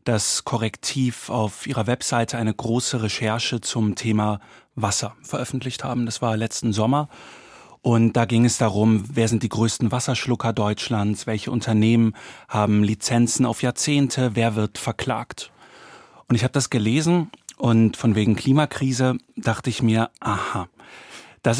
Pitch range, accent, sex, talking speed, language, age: 110-130 Hz, German, male, 140 wpm, German, 40-59